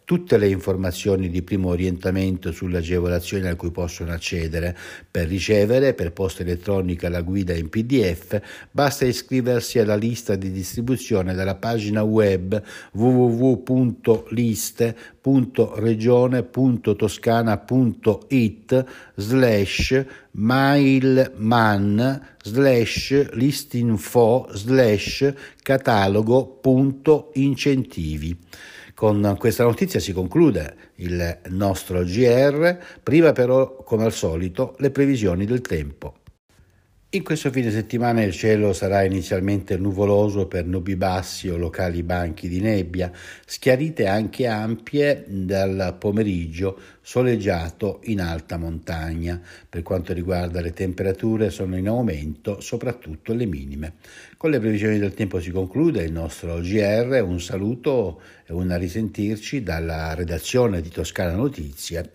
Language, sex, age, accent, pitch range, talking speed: Italian, male, 60-79, native, 90-120 Hz, 105 wpm